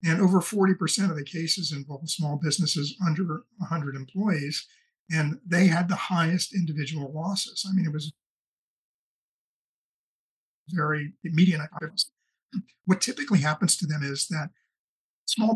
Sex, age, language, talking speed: male, 50-69, English, 125 wpm